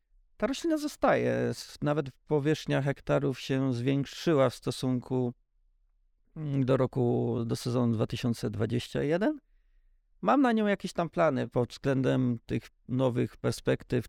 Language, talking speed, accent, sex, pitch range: Polish, 110 wpm, native, male, 115-145 Hz